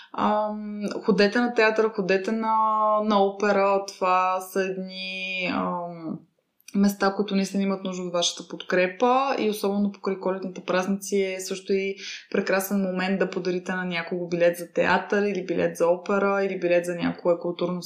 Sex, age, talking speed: female, 20-39, 160 wpm